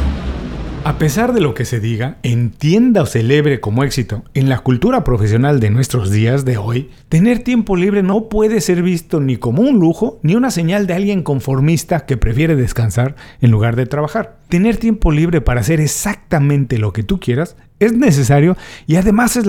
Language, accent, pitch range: Spanish, Mexican, 120-180 Hz